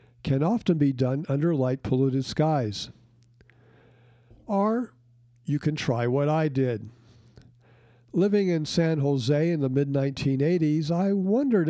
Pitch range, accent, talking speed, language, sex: 125-165 Hz, American, 120 wpm, English, male